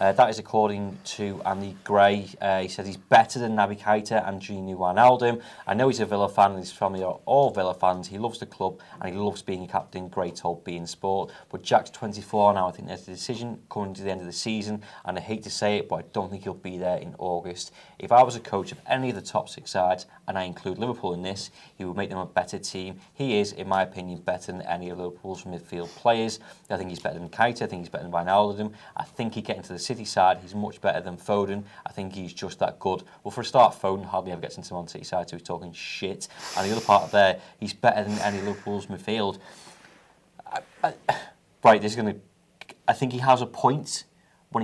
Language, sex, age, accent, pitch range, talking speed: English, male, 30-49, British, 90-105 Hz, 250 wpm